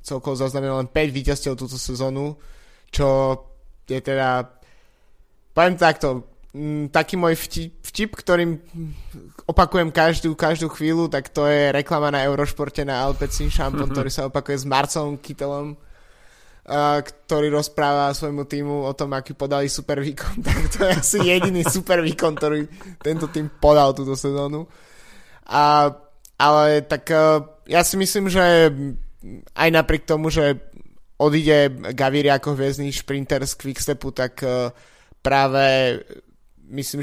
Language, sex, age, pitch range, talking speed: Slovak, male, 20-39, 135-150 Hz, 135 wpm